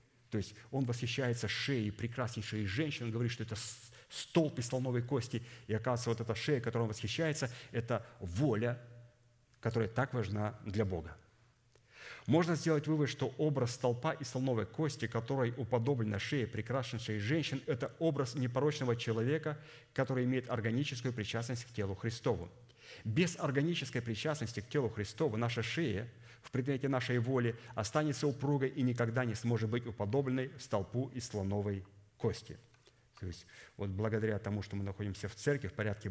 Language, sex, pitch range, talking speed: Russian, male, 105-130 Hz, 155 wpm